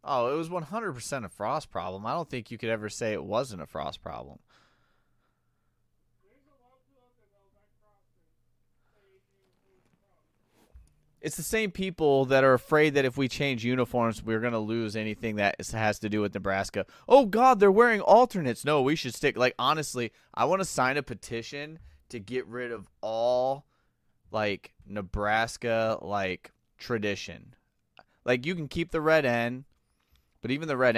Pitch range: 105-135 Hz